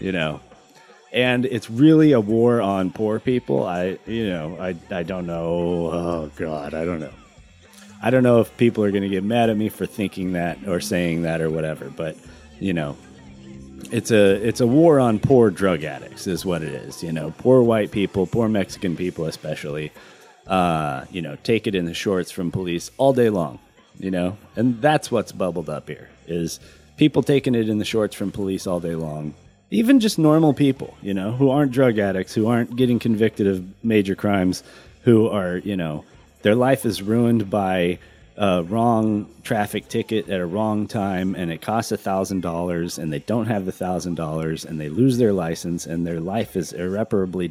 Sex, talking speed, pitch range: male, 195 wpm, 85-115 Hz